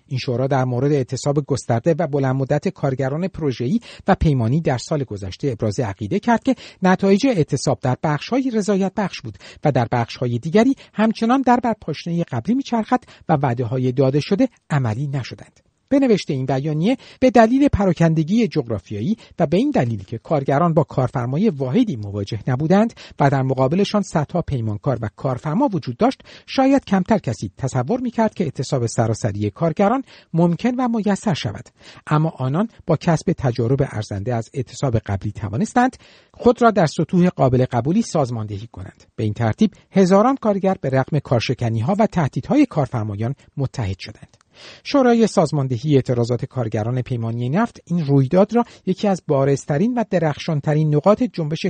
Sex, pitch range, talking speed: male, 125-200 Hz, 155 wpm